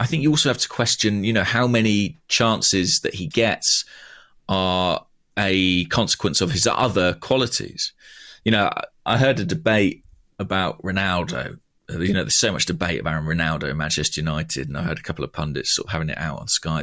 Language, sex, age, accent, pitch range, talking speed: English, male, 30-49, British, 85-115 Hz, 195 wpm